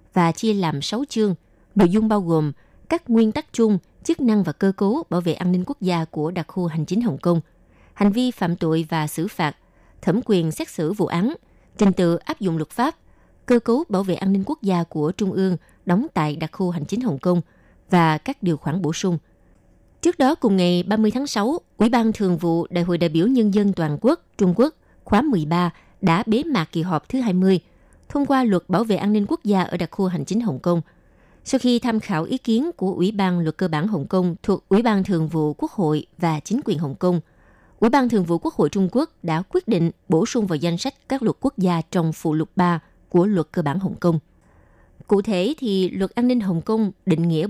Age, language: 20-39, Vietnamese